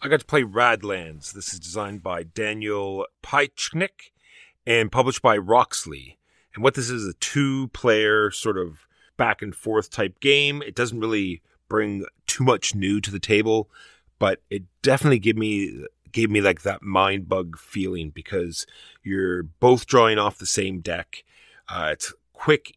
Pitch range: 90-115 Hz